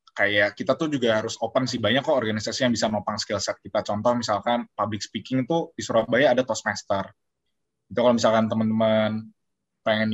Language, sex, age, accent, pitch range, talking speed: Indonesian, male, 20-39, native, 105-125 Hz, 170 wpm